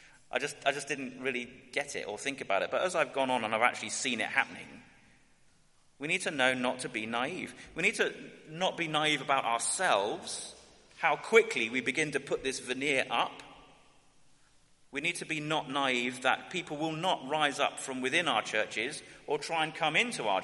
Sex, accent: male, British